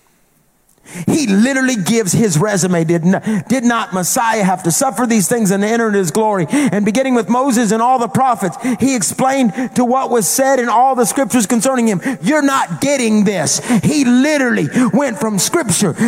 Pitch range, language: 205-280 Hz, English